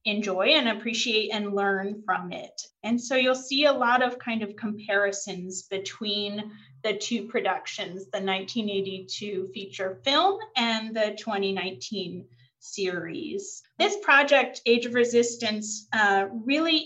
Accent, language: American, English